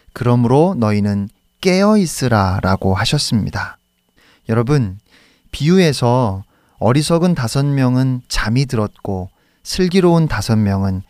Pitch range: 105-145 Hz